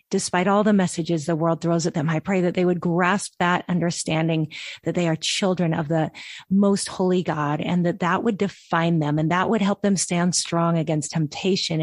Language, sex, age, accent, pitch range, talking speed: English, female, 40-59, American, 165-190 Hz, 210 wpm